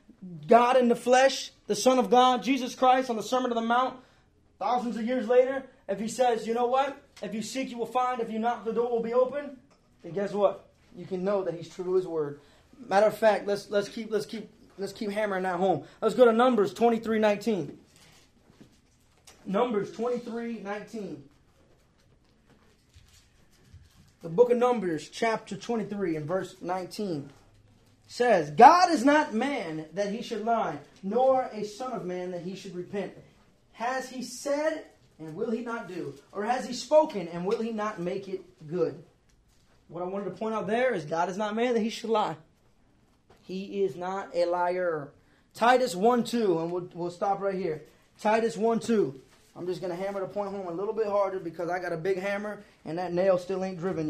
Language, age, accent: English, 20-39, American